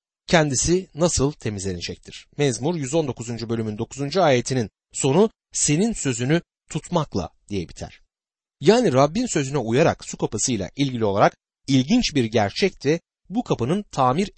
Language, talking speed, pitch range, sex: Turkish, 120 wpm, 110-185 Hz, male